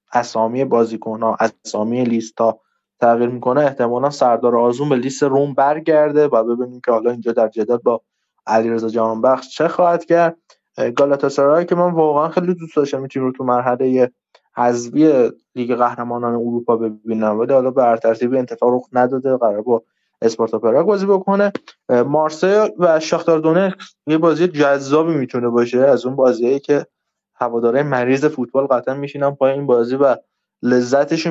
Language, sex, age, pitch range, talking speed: Persian, male, 20-39, 120-150 Hz, 150 wpm